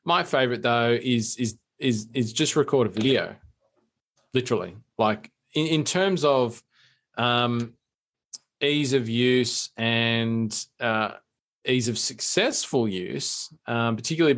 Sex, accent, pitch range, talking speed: male, Australian, 115-130 Hz, 120 wpm